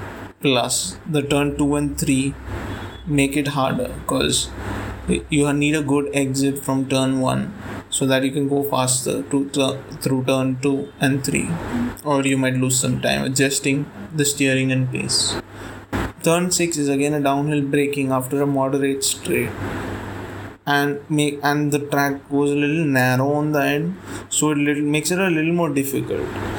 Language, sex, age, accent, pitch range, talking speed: English, male, 20-39, Indian, 115-145 Hz, 165 wpm